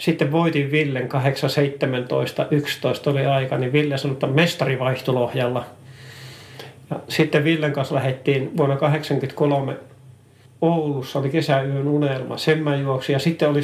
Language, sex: Finnish, male